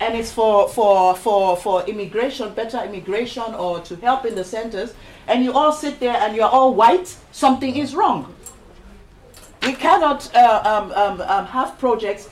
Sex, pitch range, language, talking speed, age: female, 200-255 Hz, English, 170 wpm, 50-69